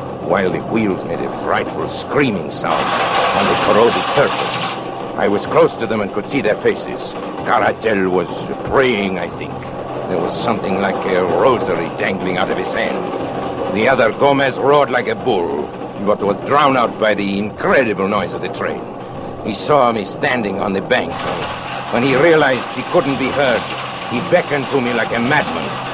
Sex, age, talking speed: male, 60-79, 180 wpm